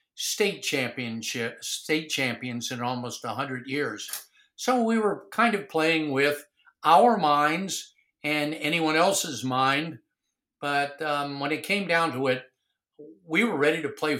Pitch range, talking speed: 135-160 Hz, 150 wpm